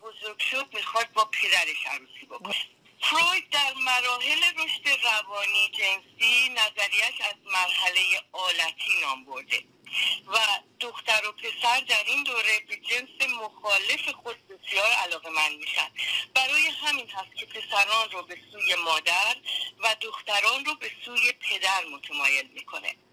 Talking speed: 115 wpm